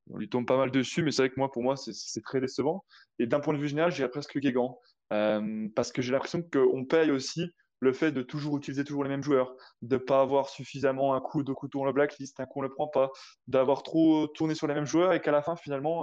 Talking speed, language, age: 275 wpm, French, 20-39